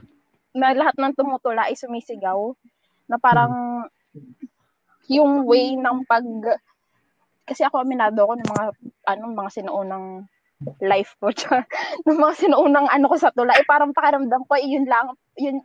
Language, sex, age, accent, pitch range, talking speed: Filipino, female, 20-39, native, 215-290 Hz, 145 wpm